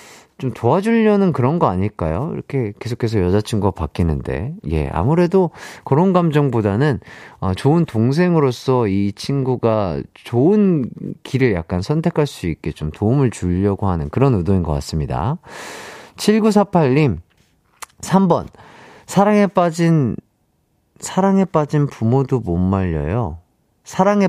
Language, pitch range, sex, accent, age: Korean, 105-170 Hz, male, native, 40-59